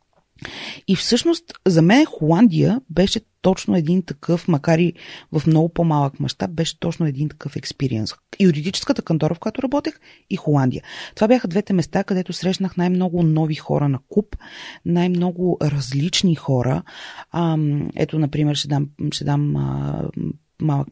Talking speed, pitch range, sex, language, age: 140 wpm, 145-195 Hz, female, Bulgarian, 30-49